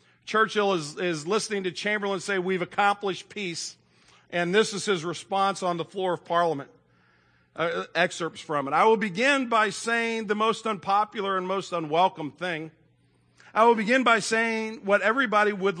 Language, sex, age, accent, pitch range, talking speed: English, male, 50-69, American, 165-220 Hz, 165 wpm